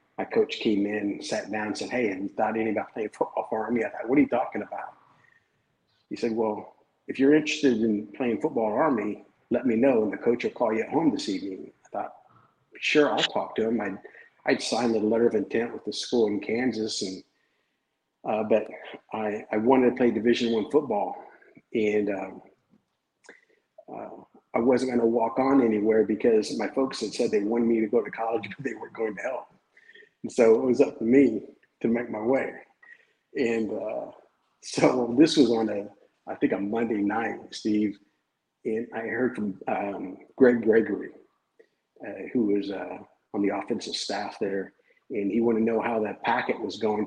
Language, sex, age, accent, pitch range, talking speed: English, male, 50-69, American, 105-130 Hz, 200 wpm